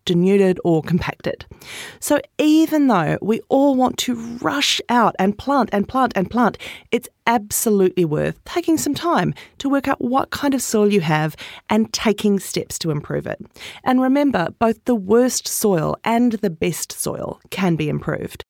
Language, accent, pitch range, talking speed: English, Australian, 180-250 Hz, 170 wpm